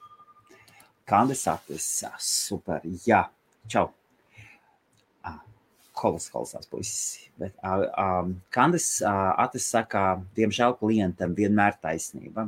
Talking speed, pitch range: 85 wpm, 90-120 Hz